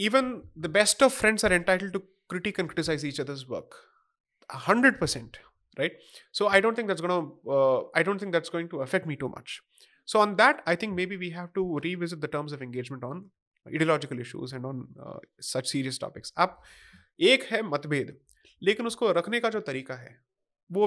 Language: Hindi